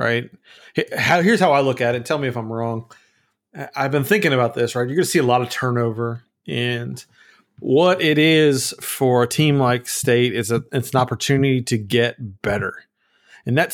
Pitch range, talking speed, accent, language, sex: 120-145 Hz, 190 wpm, American, English, male